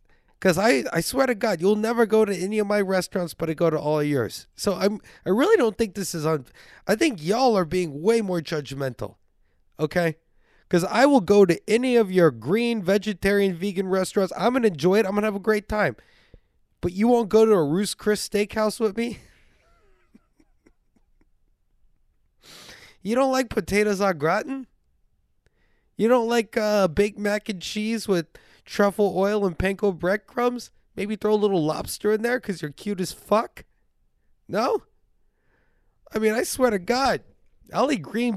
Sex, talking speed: male, 180 wpm